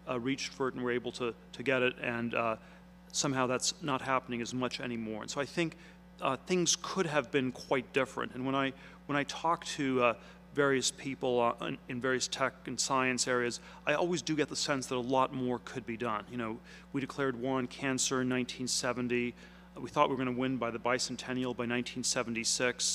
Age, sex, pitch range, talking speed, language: 40-59, male, 120-140 Hz, 215 wpm, English